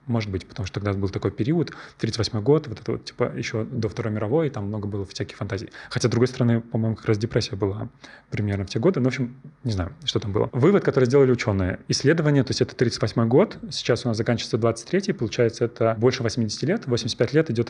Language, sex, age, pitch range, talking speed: Russian, male, 20-39, 115-130 Hz, 230 wpm